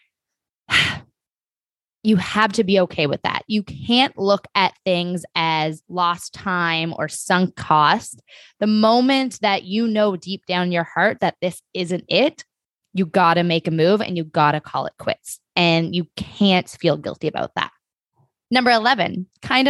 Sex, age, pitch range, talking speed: female, 20-39, 180-240 Hz, 170 wpm